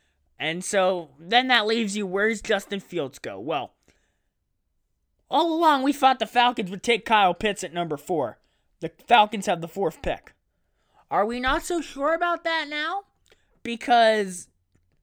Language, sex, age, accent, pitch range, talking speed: English, male, 20-39, American, 140-220 Hz, 160 wpm